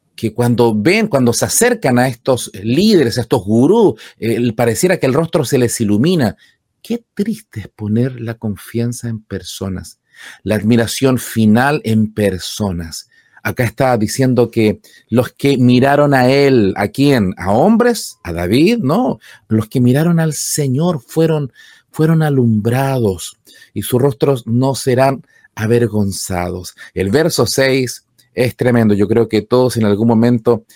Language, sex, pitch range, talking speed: Spanish, male, 105-130 Hz, 145 wpm